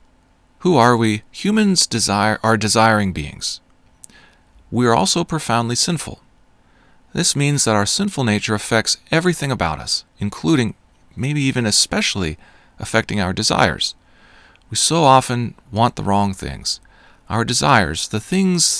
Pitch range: 110-165 Hz